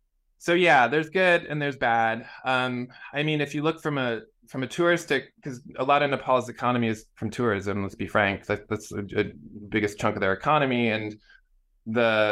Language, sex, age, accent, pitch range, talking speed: English, male, 20-39, American, 105-135 Hz, 195 wpm